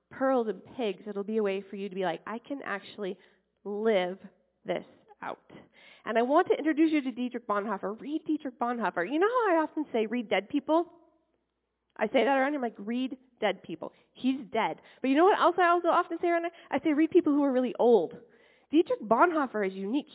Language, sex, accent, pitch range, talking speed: English, female, American, 215-310 Hz, 215 wpm